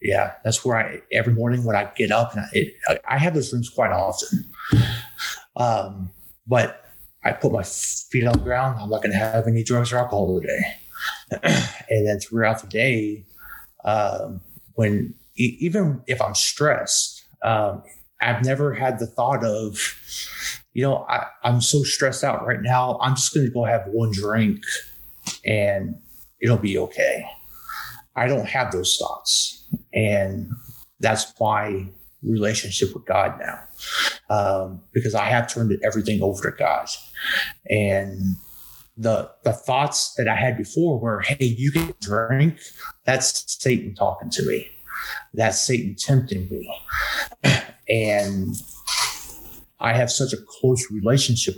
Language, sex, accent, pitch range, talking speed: English, male, American, 100-125 Hz, 145 wpm